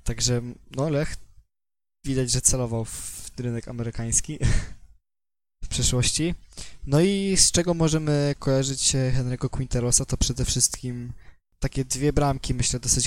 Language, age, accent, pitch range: Polish, 20-39, native, 120-140 Hz